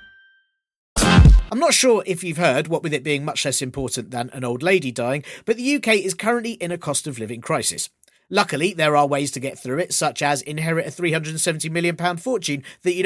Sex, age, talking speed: male, 40-59, 210 wpm